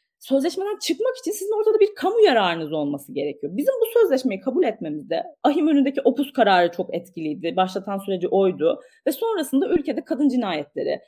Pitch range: 205-340 Hz